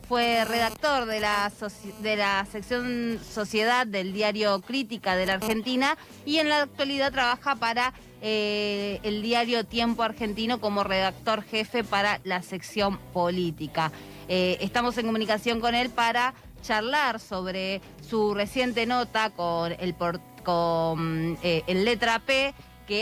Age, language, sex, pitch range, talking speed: 20-39, Spanish, female, 180-225 Hz, 140 wpm